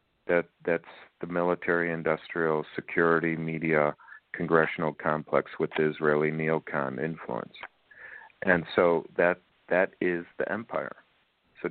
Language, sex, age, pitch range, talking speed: English, male, 50-69, 80-90 Hz, 110 wpm